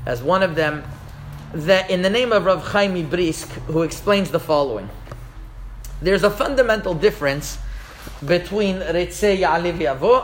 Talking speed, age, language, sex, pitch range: 140 wpm, 40-59, English, male, 150-200 Hz